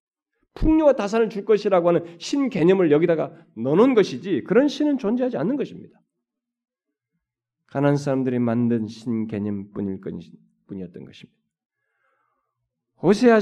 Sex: male